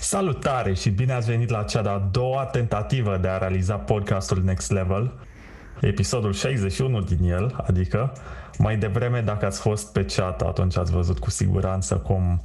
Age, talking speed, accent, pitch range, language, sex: 20-39, 170 wpm, native, 90-115 Hz, Romanian, male